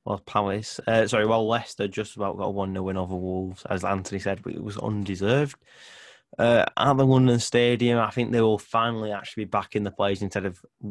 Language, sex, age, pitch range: English, male, 20-39, 95-120 Hz